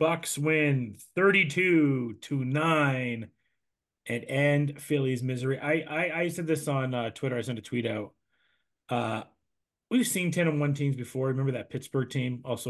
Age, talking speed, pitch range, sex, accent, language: 30-49, 165 wpm, 125-170 Hz, male, American, English